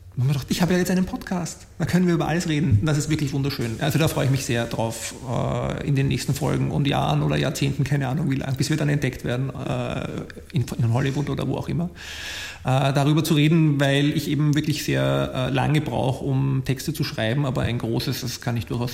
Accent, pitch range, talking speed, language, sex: German, 120-150 Hz, 220 wpm, German, male